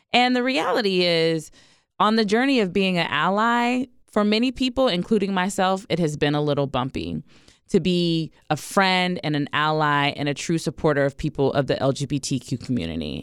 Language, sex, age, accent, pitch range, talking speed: English, female, 20-39, American, 150-210 Hz, 175 wpm